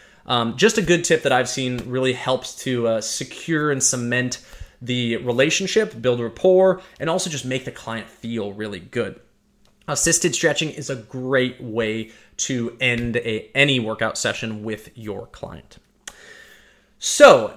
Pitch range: 120-170 Hz